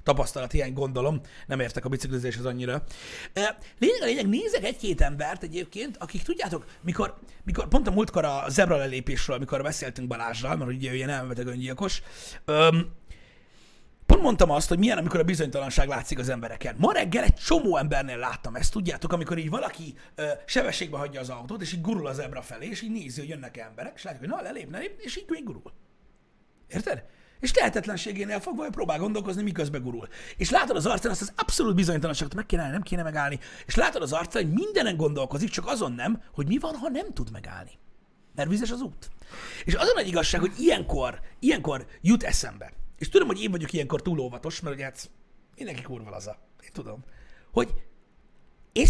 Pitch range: 130-210 Hz